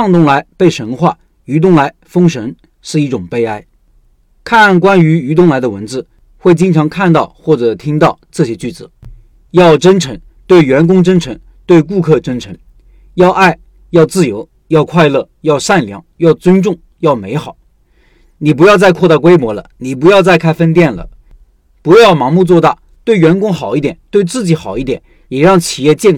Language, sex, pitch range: Chinese, male, 140-180 Hz